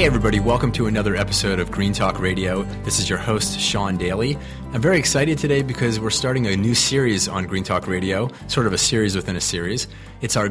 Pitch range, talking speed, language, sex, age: 95-115 Hz, 225 wpm, English, male, 30-49